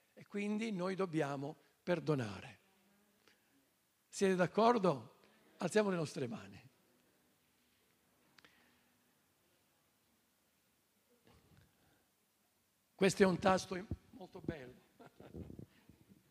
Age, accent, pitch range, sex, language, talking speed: 60-79, native, 160-220 Hz, male, Italian, 65 wpm